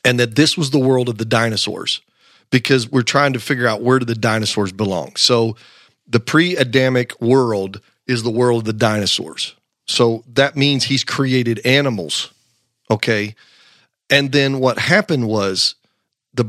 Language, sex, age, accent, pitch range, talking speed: English, male, 40-59, American, 110-135 Hz, 155 wpm